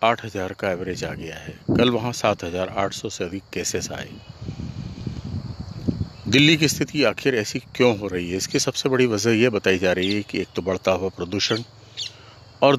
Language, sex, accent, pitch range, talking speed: Hindi, male, native, 95-120 Hz, 195 wpm